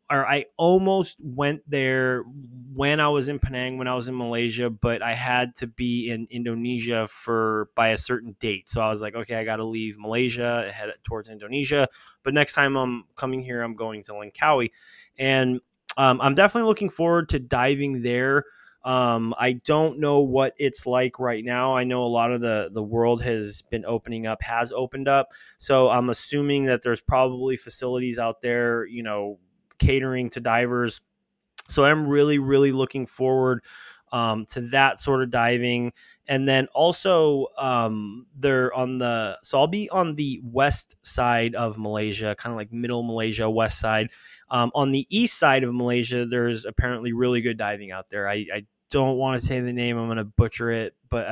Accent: American